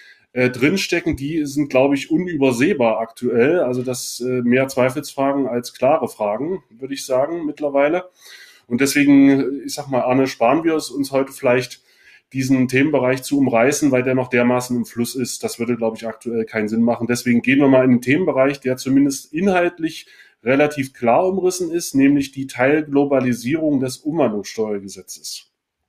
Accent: German